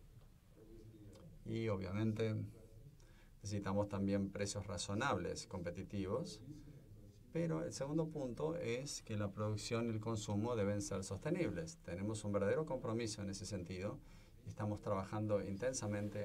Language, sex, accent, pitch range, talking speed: English, male, Argentinian, 100-115 Hz, 115 wpm